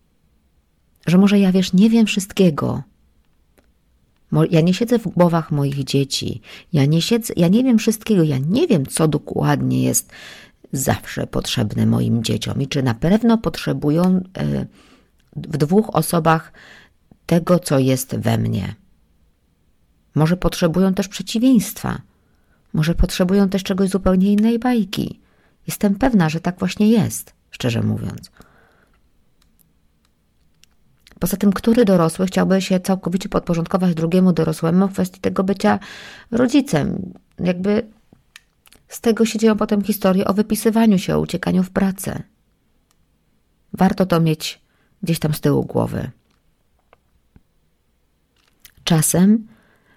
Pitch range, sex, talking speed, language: 135-195 Hz, female, 120 wpm, Polish